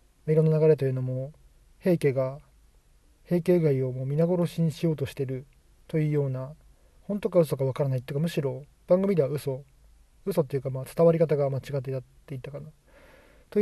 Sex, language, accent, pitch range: male, Japanese, native, 120-155 Hz